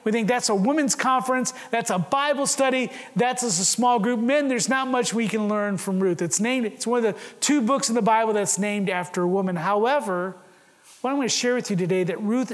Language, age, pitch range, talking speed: English, 40-59, 190-255 Hz, 240 wpm